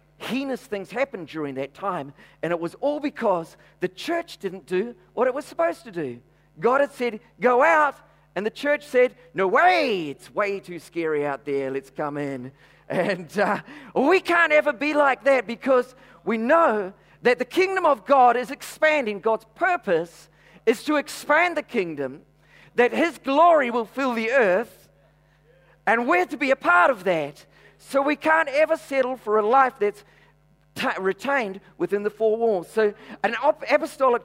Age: 40-59